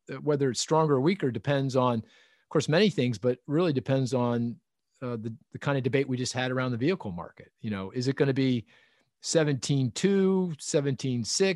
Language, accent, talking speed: English, American, 190 wpm